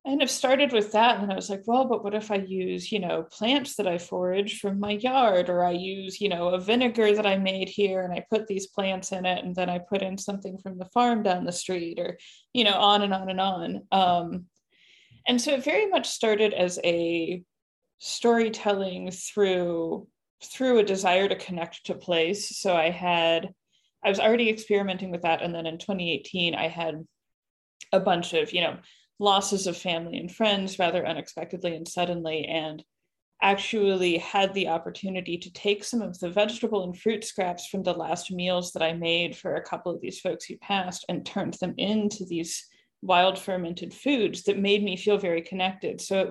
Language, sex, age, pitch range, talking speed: English, female, 20-39, 175-205 Hz, 200 wpm